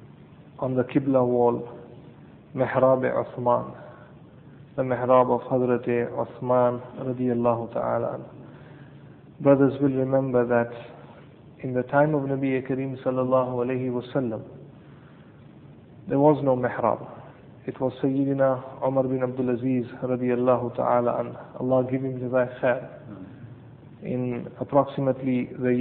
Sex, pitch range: male, 125-135 Hz